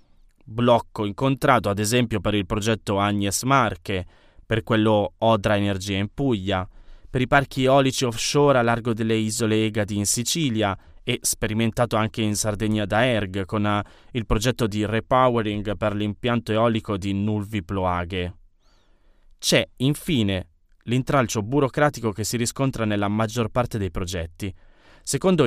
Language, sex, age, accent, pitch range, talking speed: Italian, male, 20-39, native, 100-125 Hz, 135 wpm